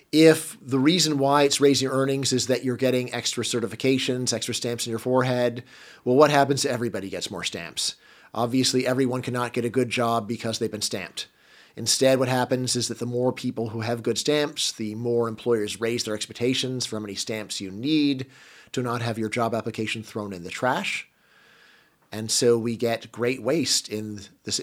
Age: 40-59